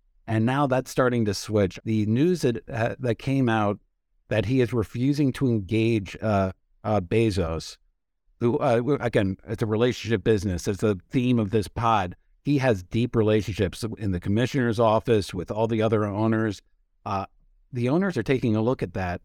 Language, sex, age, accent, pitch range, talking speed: English, male, 50-69, American, 100-130 Hz, 180 wpm